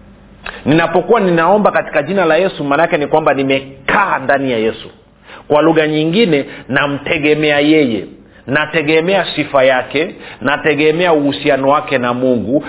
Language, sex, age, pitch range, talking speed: Swahili, male, 40-59, 140-170 Hz, 125 wpm